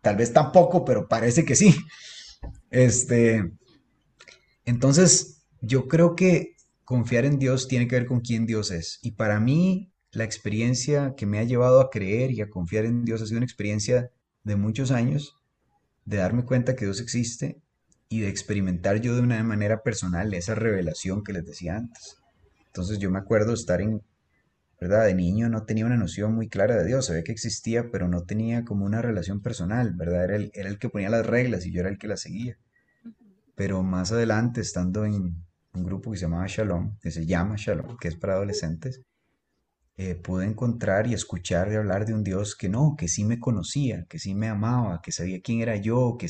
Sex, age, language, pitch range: male, 30-49, Spanish, 95-125 Hz